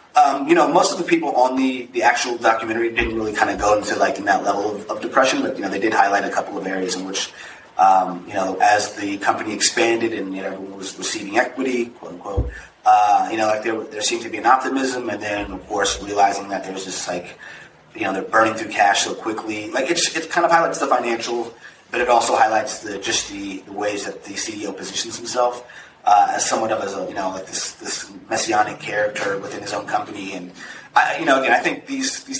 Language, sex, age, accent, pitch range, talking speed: English, male, 30-49, American, 95-120 Hz, 235 wpm